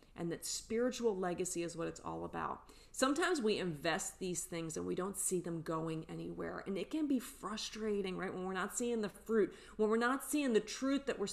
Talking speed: 215 wpm